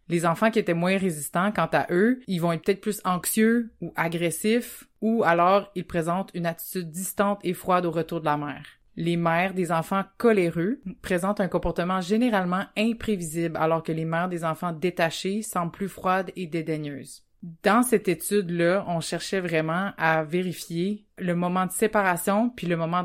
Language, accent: French, Canadian